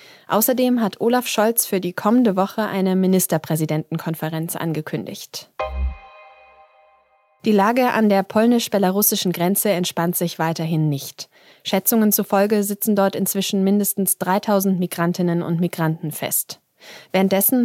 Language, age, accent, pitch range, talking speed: German, 20-39, German, 170-215 Hz, 110 wpm